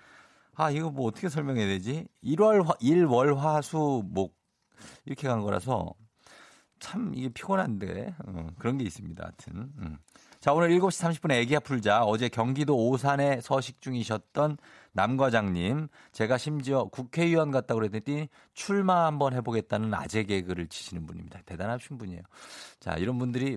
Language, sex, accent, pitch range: Korean, male, native, 100-155 Hz